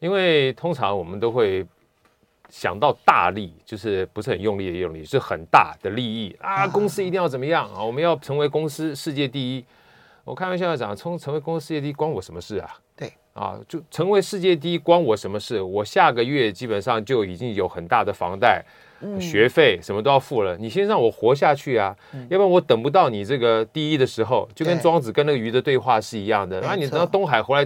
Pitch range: 105-165 Hz